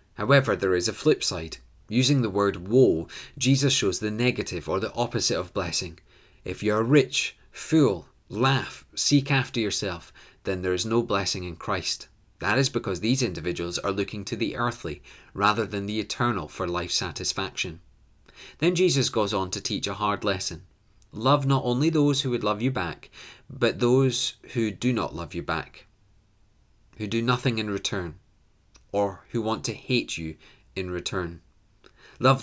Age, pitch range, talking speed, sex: 30-49, 95-125 Hz, 170 wpm, male